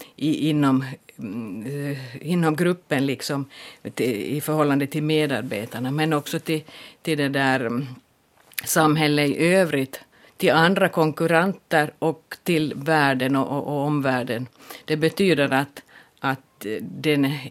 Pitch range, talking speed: 135-155 Hz, 110 wpm